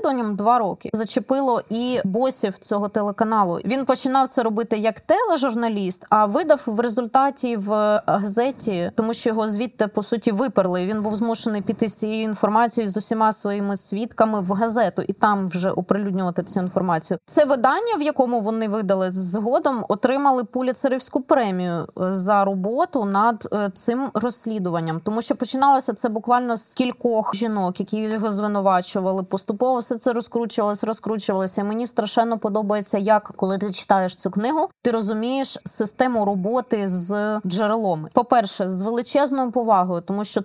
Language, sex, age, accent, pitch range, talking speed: Ukrainian, female, 20-39, native, 205-235 Hz, 145 wpm